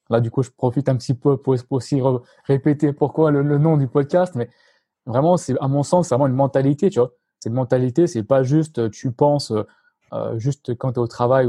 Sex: male